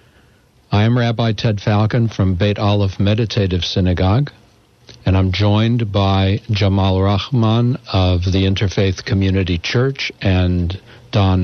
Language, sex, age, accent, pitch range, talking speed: English, male, 60-79, American, 95-115 Hz, 120 wpm